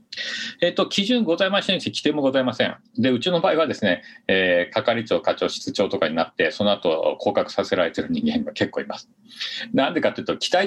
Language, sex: Japanese, male